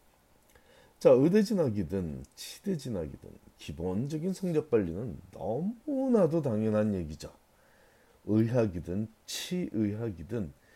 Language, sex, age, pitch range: Korean, male, 40-59, 90-135 Hz